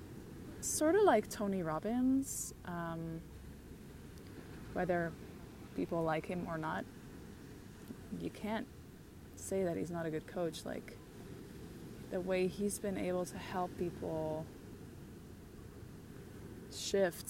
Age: 20-39